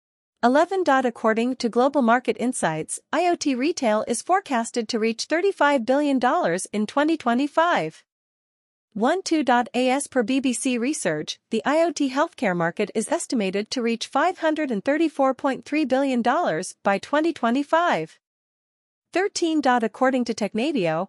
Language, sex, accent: English, female, American